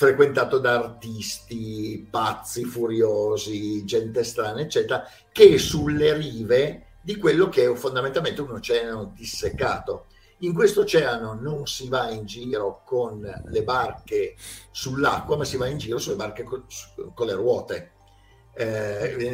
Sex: male